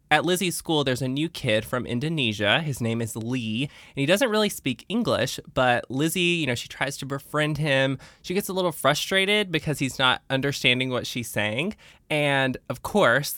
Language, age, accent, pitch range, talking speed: English, 20-39, American, 120-155 Hz, 195 wpm